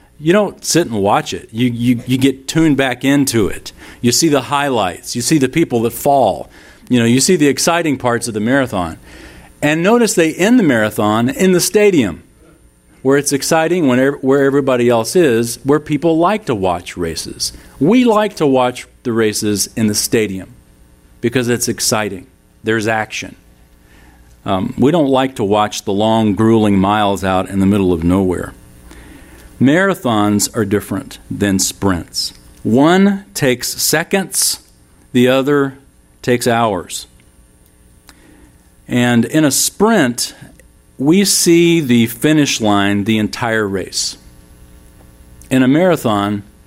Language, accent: English, American